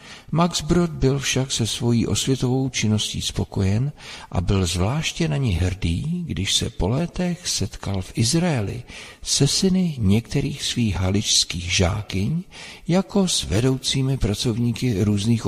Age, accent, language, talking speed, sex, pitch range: 50-69, native, Czech, 130 wpm, male, 95-120 Hz